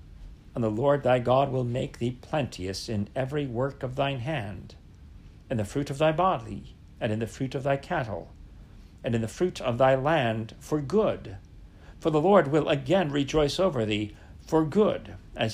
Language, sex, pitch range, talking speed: English, male, 100-150 Hz, 185 wpm